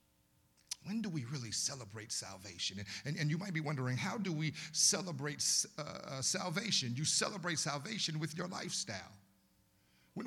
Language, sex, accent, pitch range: English, male, American, 125-185 Hz